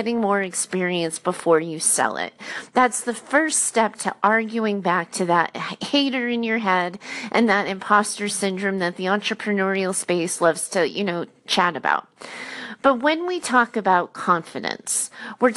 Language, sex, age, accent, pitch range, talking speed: English, female, 30-49, American, 195-260 Hz, 160 wpm